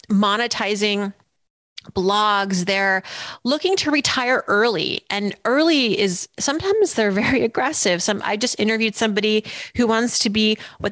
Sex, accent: female, American